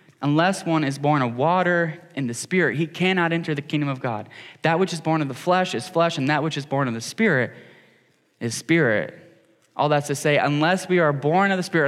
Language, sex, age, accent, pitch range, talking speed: English, male, 10-29, American, 150-190 Hz, 230 wpm